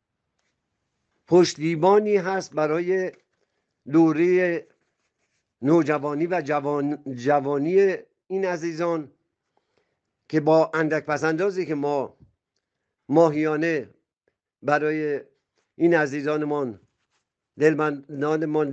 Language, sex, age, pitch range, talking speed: Persian, male, 50-69, 145-180 Hz, 75 wpm